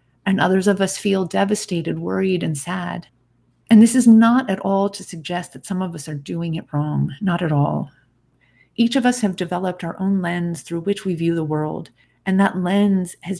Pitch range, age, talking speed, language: 165-200 Hz, 30-49, 205 wpm, English